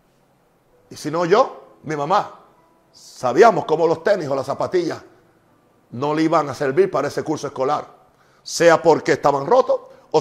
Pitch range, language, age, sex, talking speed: 155-205 Hz, Spanish, 50-69, male, 160 wpm